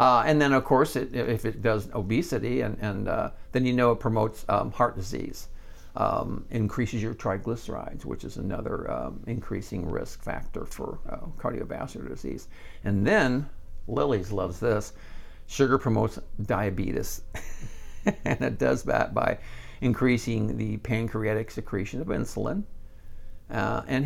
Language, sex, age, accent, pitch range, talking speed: English, male, 60-79, American, 105-135 Hz, 140 wpm